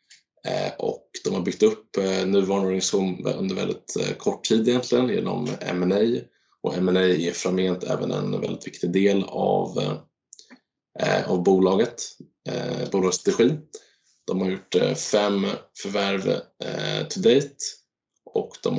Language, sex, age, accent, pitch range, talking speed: Swedish, male, 20-39, Norwegian, 95-110 Hz, 125 wpm